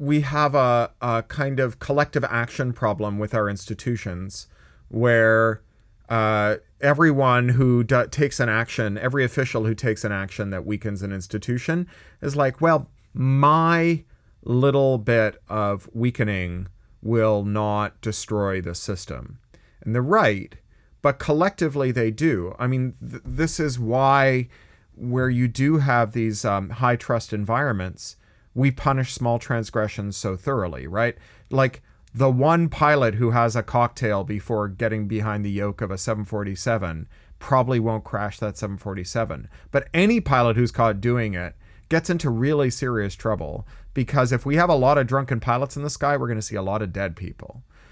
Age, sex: 40-59, male